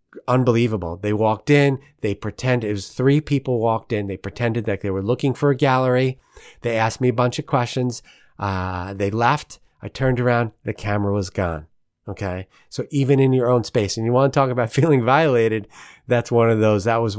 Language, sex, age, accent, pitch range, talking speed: English, male, 30-49, American, 100-140 Hz, 210 wpm